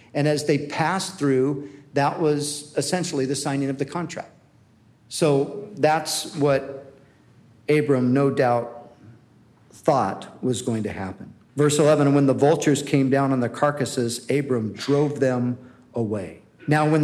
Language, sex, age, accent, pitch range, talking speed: English, male, 50-69, American, 125-155 Hz, 140 wpm